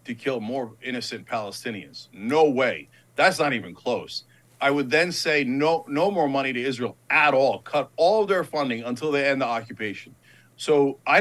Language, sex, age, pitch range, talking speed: English, male, 50-69, 140-225 Hz, 185 wpm